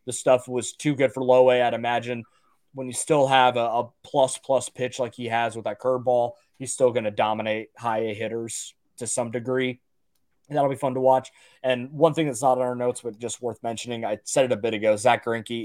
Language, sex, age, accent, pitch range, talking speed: English, male, 20-39, American, 115-135 Hz, 240 wpm